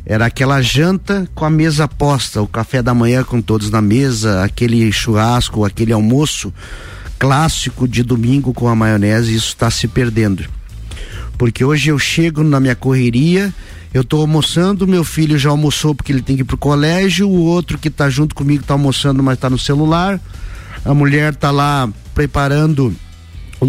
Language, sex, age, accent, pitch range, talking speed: Portuguese, male, 50-69, Brazilian, 115-155 Hz, 170 wpm